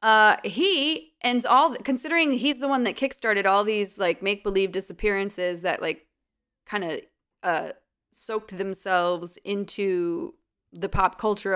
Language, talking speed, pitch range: English, 130 wpm, 195-245 Hz